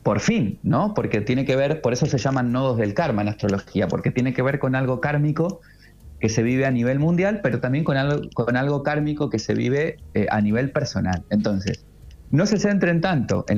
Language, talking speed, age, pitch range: Spanish, 215 wpm, 30-49, 105-145 Hz